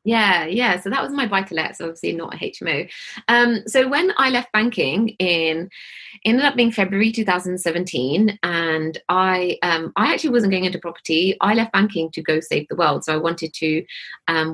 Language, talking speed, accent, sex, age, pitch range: English, 190 wpm, British, female, 30-49, 160-200 Hz